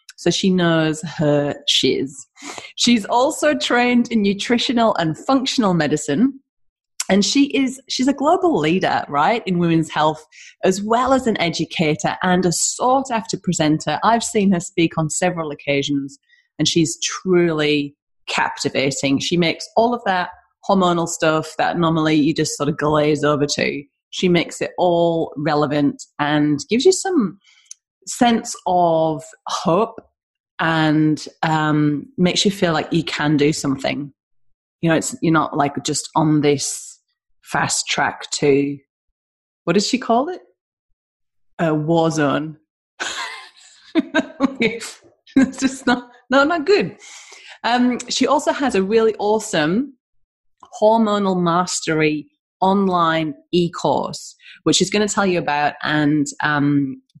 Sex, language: female, English